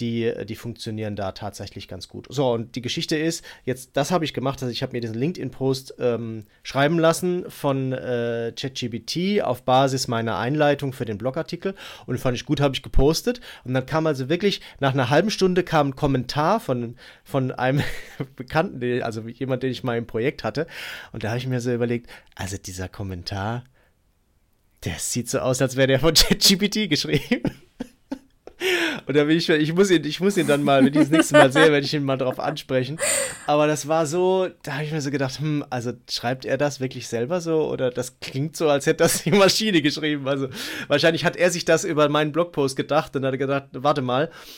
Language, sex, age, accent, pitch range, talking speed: German, male, 30-49, German, 125-155 Hz, 210 wpm